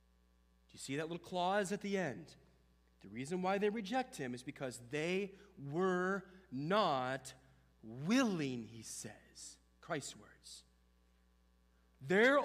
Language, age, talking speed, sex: English, 40-59, 120 wpm, male